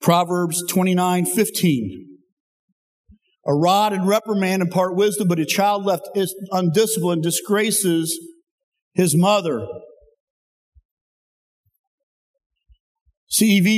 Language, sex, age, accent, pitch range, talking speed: English, male, 50-69, American, 135-190 Hz, 75 wpm